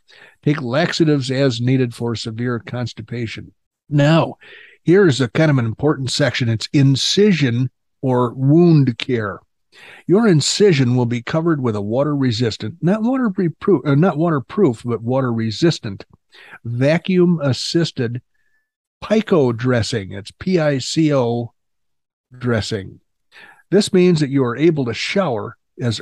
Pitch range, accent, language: 120-165 Hz, American, English